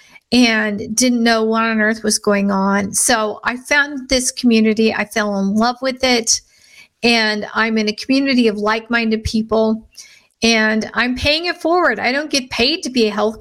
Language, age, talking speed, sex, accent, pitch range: English, 50-69, 185 wpm, female, American, 215-275 Hz